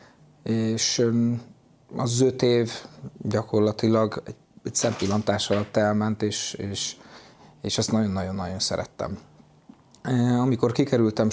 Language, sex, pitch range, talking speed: Hungarian, male, 105-115 Hz, 90 wpm